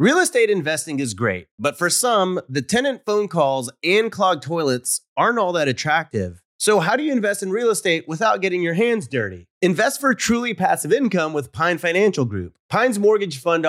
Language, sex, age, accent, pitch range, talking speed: English, male, 30-49, American, 130-195 Hz, 195 wpm